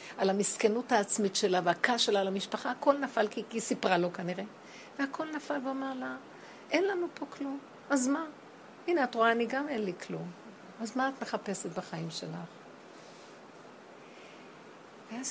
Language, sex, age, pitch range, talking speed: Hebrew, female, 60-79, 195-260 Hz, 155 wpm